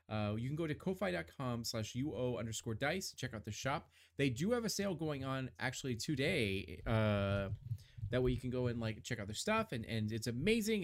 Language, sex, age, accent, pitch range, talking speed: English, male, 30-49, American, 110-160 Hz, 215 wpm